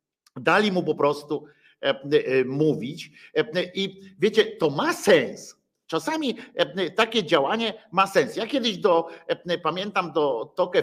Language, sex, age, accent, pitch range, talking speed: Polish, male, 50-69, native, 150-200 Hz, 115 wpm